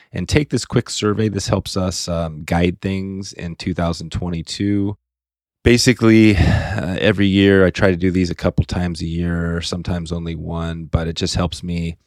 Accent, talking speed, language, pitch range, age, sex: American, 175 wpm, English, 85-100 Hz, 30-49, male